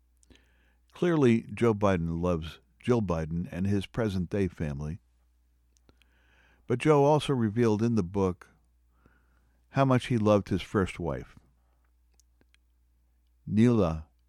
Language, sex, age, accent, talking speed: English, male, 60-79, American, 105 wpm